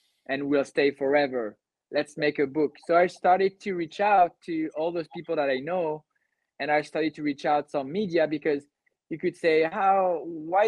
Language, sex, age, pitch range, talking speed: English, male, 20-39, 135-165 Hz, 195 wpm